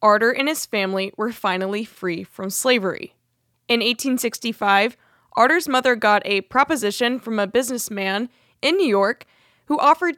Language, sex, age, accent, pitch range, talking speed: English, female, 20-39, American, 195-260 Hz, 140 wpm